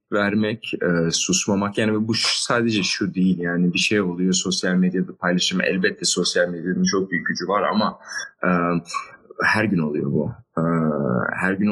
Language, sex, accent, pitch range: Turkish, male, native, 90-120 Hz